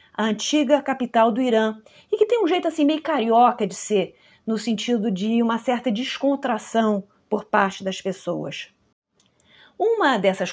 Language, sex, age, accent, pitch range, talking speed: Portuguese, female, 40-59, Brazilian, 205-265 Hz, 155 wpm